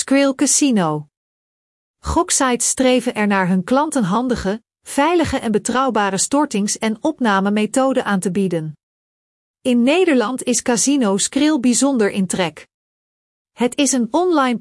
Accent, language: Dutch, Dutch